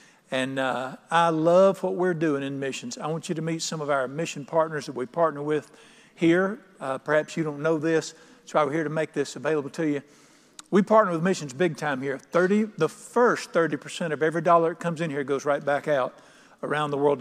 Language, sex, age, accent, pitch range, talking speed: English, male, 50-69, American, 150-190 Hz, 225 wpm